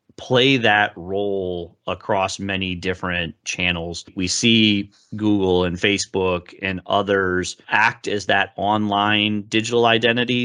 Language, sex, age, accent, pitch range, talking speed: English, male, 30-49, American, 90-100 Hz, 115 wpm